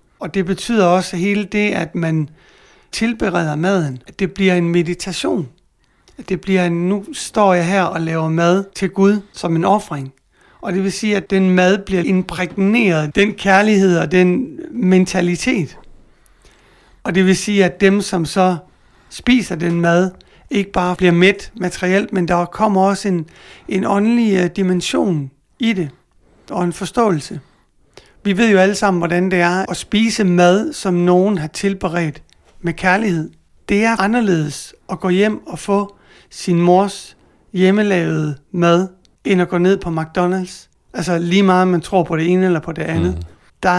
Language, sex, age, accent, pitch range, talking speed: Danish, male, 60-79, native, 175-200 Hz, 165 wpm